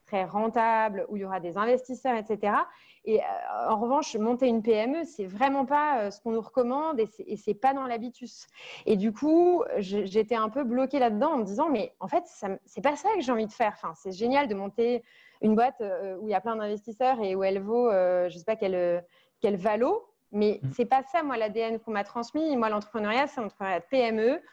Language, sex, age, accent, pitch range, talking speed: French, female, 30-49, French, 210-260 Hz, 220 wpm